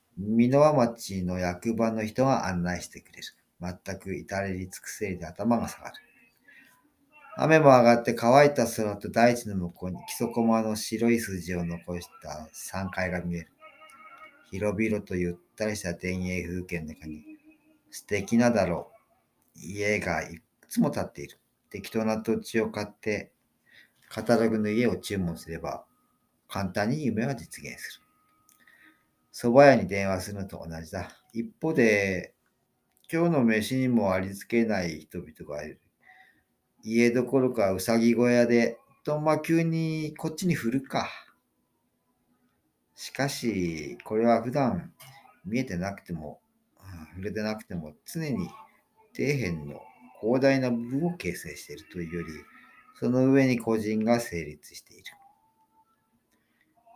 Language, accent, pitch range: Japanese, native, 90-130 Hz